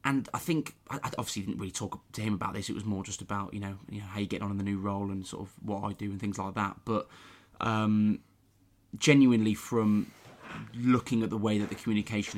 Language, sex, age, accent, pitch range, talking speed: English, male, 20-39, British, 100-110 Hz, 240 wpm